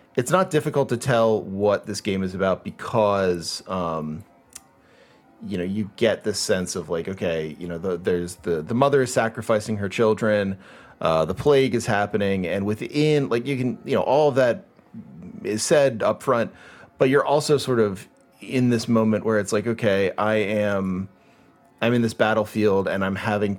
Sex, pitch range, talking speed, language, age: male, 95-115 Hz, 185 wpm, English, 30-49